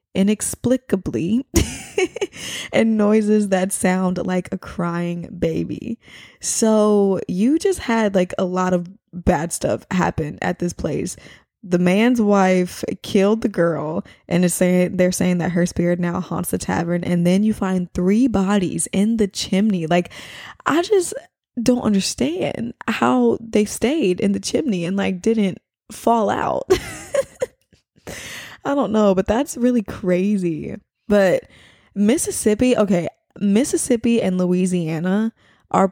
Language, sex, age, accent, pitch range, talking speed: English, female, 20-39, American, 175-220 Hz, 135 wpm